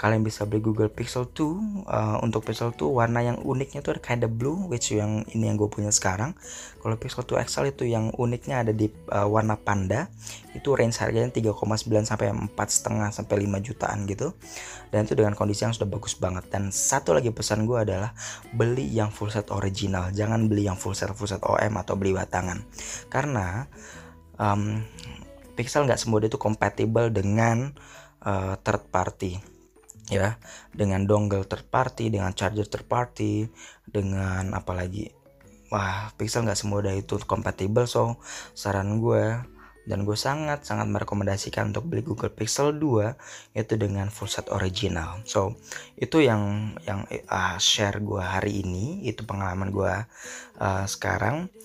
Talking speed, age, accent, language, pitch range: 150 wpm, 20-39, native, Indonesian, 100-115 Hz